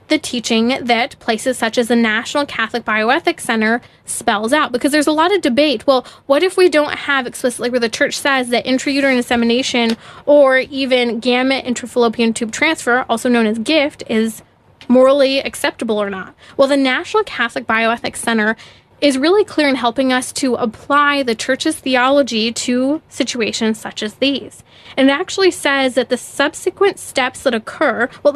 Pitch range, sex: 230-275 Hz, female